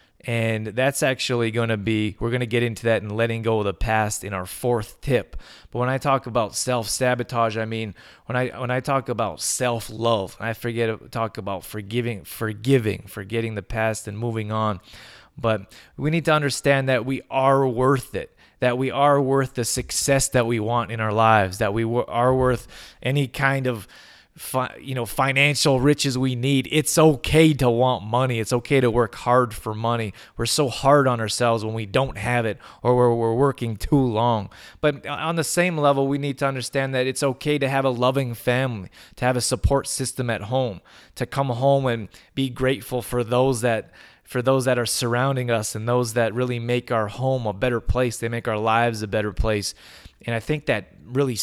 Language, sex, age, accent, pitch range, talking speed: English, male, 30-49, American, 115-135 Hz, 200 wpm